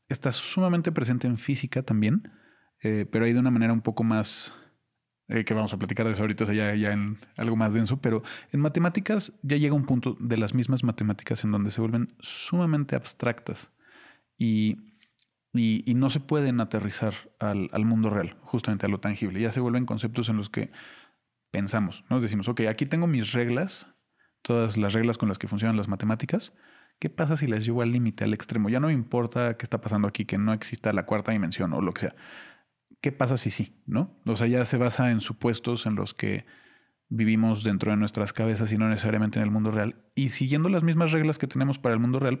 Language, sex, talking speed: Spanish, male, 215 wpm